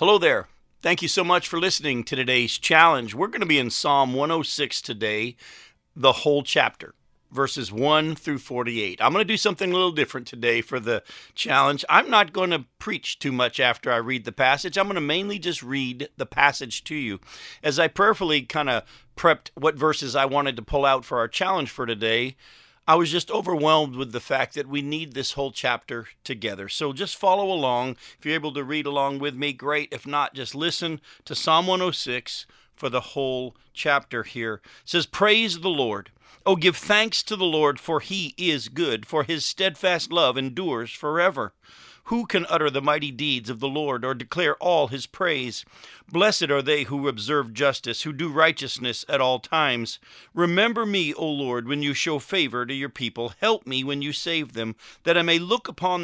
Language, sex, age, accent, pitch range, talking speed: English, male, 50-69, American, 130-175 Hz, 200 wpm